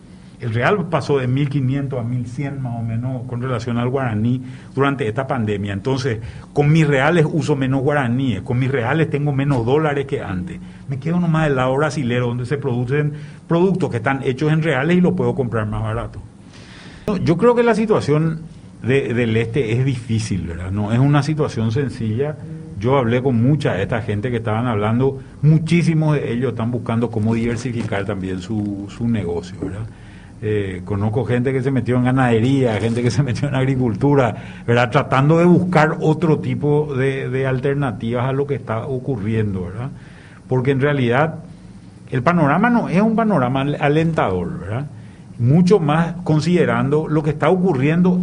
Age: 50-69